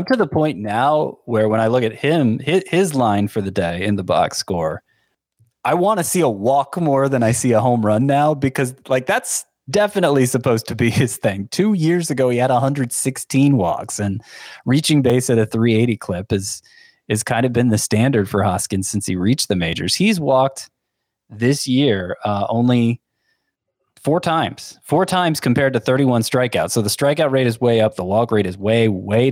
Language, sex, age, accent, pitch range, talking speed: English, male, 20-39, American, 110-140 Hz, 200 wpm